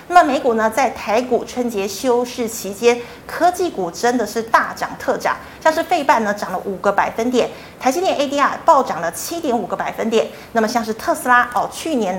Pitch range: 210-275 Hz